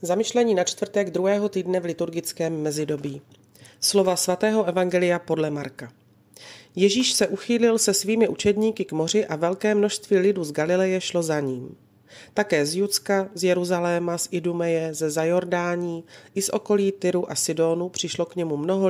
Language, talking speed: Slovak, 155 wpm